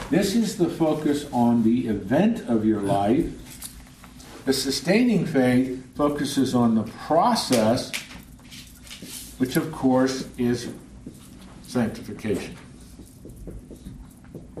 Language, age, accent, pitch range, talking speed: English, 60-79, American, 95-140 Hz, 90 wpm